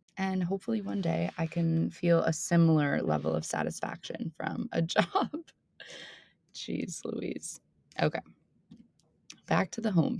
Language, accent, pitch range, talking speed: English, American, 150-180 Hz, 130 wpm